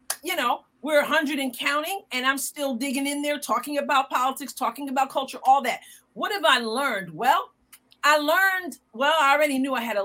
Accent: American